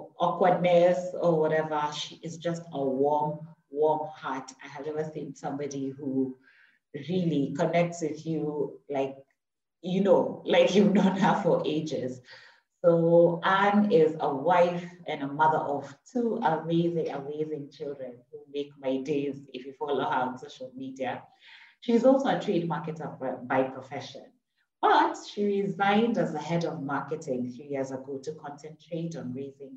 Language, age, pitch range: English, 30-49, 140-175 Hz